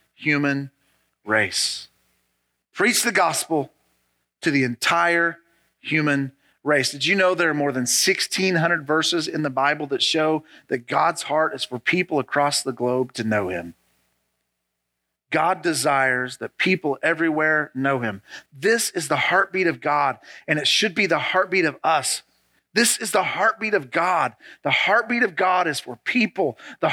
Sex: male